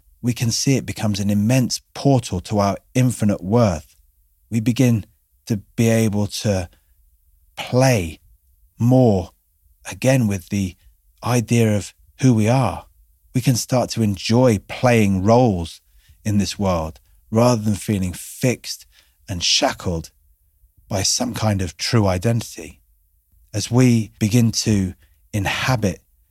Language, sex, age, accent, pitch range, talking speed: English, male, 30-49, British, 85-115 Hz, 125 wpm